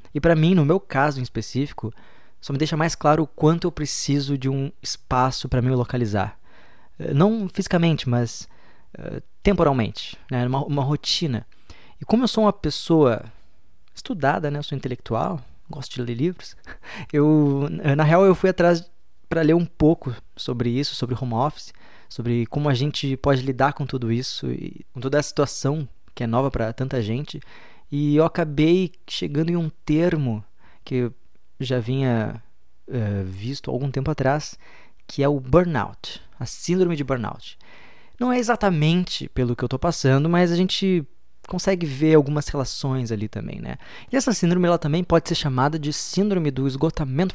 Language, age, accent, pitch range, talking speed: Portuguese, 20-39, Brazilian, 125-165 Hz, 175 wpm